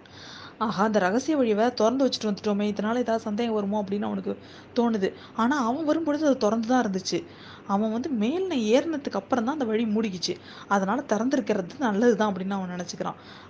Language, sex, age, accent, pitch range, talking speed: Tamil, female, 20-39, native, 195-250 Hz, 160 wpm